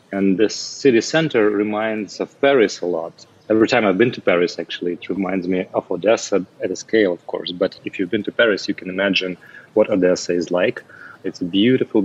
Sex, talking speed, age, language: male, 210 wpm, 30-49, English